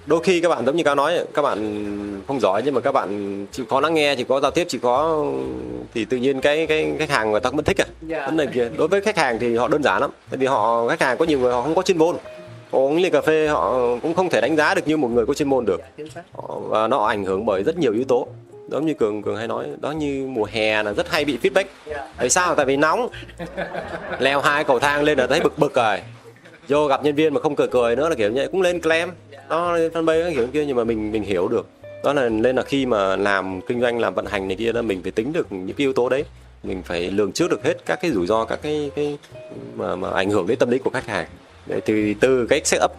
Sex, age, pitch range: male, 20-39, 105-155 Hz